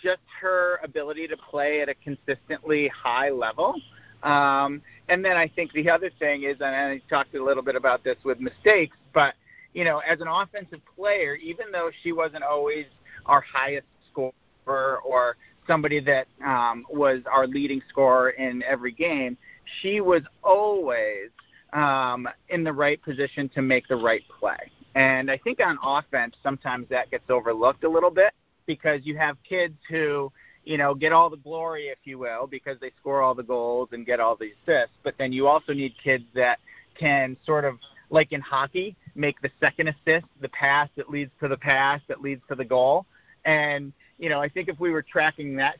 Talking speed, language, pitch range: 190 wpm, English, 135-160 Hz